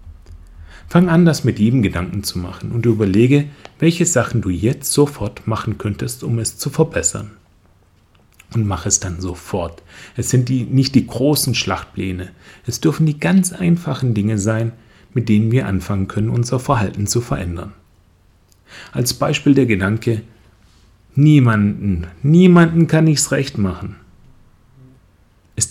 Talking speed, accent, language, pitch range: 140 wpm, German, German, 95-130 Hz